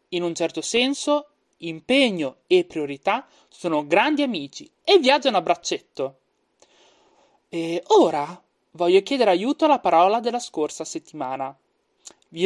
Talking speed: 120 wpm